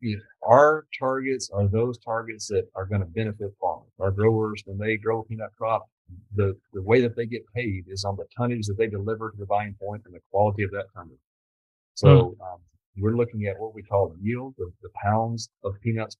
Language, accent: English, American